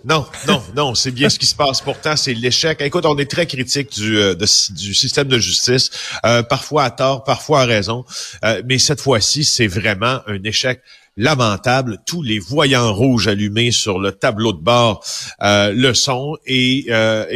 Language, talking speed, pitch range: French, 185 wpm, 105-135 Hz